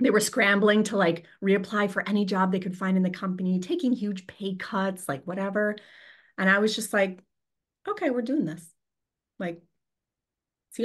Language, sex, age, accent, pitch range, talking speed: English, female, 30-49, American, 175-230 Hz, 175 wpm